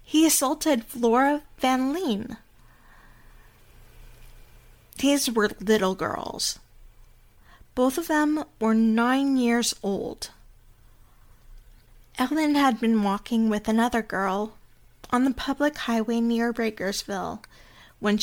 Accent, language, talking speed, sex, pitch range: American, English, 100 wpm, female, 210-260 Hz